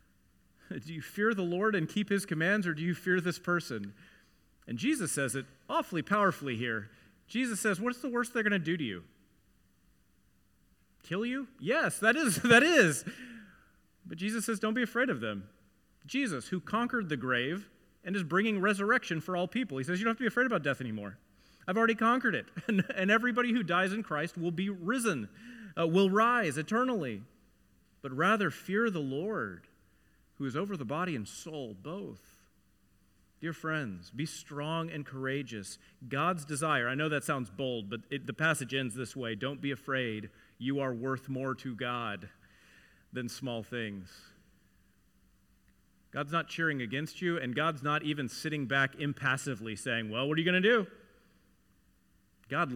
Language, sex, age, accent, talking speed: English, male, 30-49, American, 175 wpm